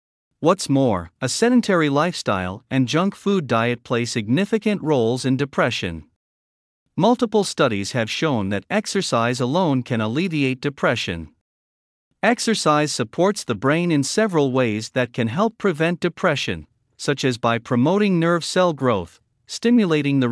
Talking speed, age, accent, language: 135 wpm, 50-69, American, English